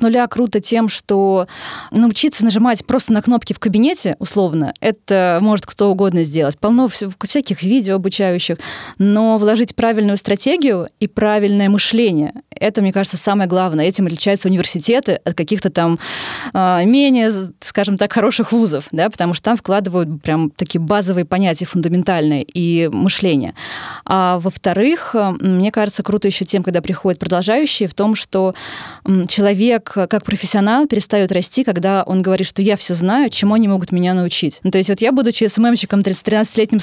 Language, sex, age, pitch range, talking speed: Russian, female, 20-39, 180-215 Hz, 155 wpm